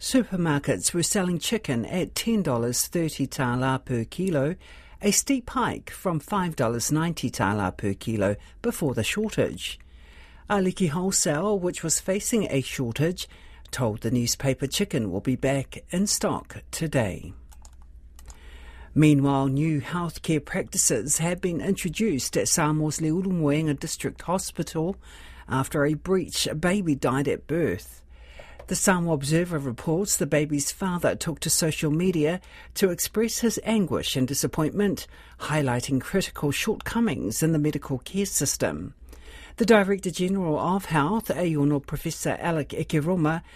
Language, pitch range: English, 130-185 Hz